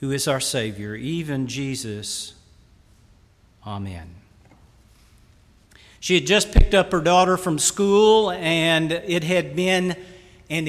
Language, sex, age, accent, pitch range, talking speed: English, male, 50-69, American, 125-185 Hz, 120 wpm